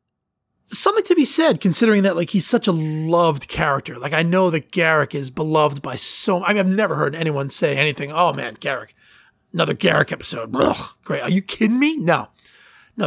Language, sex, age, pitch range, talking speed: English, male, 30-49, 150-200 Hz, 195 wpm